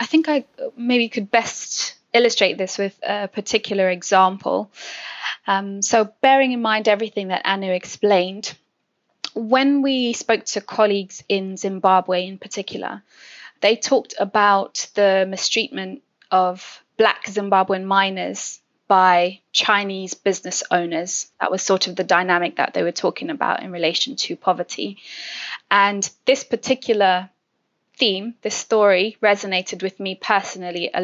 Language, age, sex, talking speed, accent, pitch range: English, 20-39, female, 135 wpm, British, 190-225 Hz